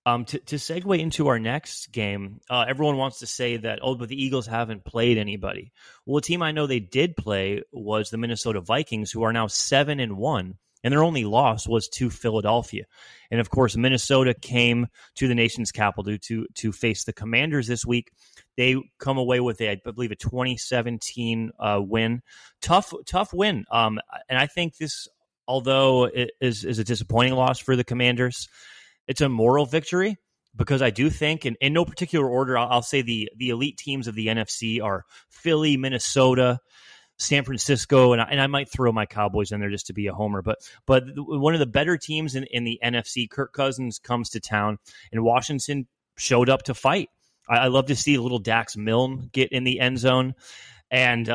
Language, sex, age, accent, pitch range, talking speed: English, male, 30-49, American, 115-135 Hz, 200 wpm